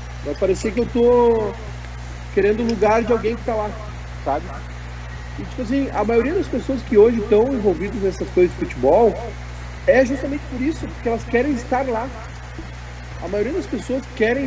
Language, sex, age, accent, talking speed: Portuguese, male, 40-59, Brazilian, 185 wpm